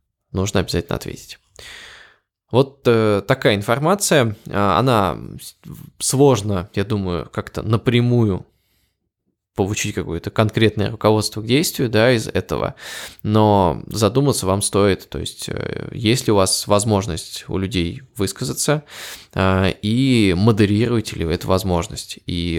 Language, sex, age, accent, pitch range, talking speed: Russian, male, 20-39, native, 90-115 Hz, 110 wpm